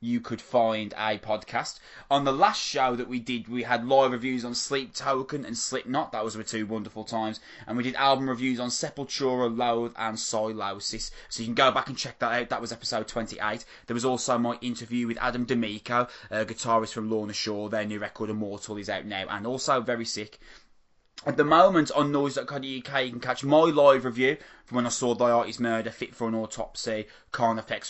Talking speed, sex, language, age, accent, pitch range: 205 wpm, male, English, 20-39, British, 110-130 Hz